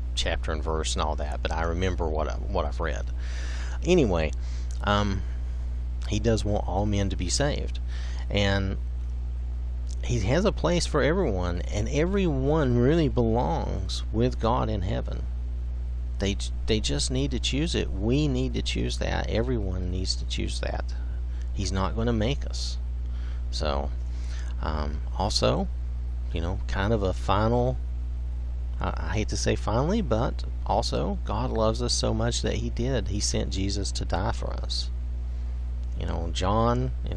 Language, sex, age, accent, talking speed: English, male, 40-59, American, 155 wpm